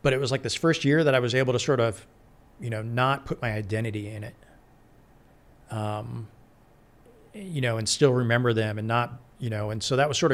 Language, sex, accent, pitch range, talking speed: English, male, American, 110-135 Hz, 220 wpm